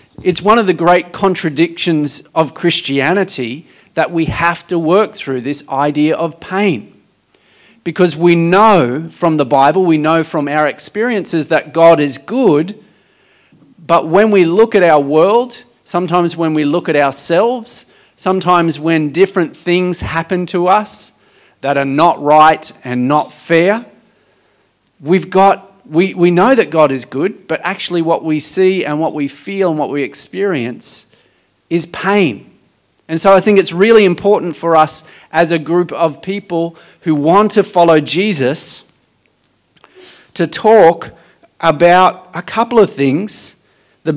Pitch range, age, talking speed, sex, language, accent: 155-195 Hz, 40-59, 150 wpm, male, English, Australian